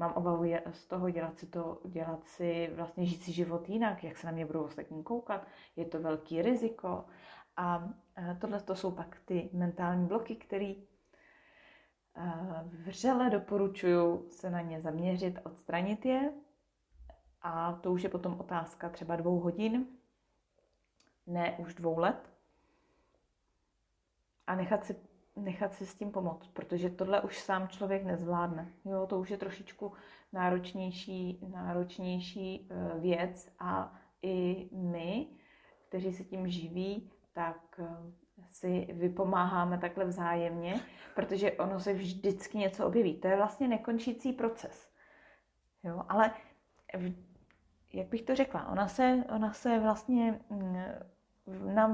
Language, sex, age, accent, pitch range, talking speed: Czech, female, 30-49, native, 175-210 Hz, 130 wpm